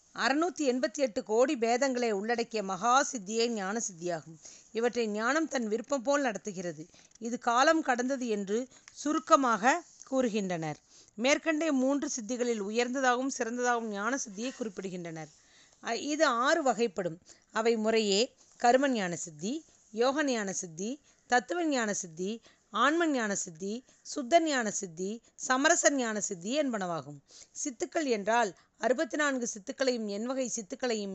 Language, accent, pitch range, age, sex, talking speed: Tamil, native, 205-275 Hz, 40-59, female, 110 wpm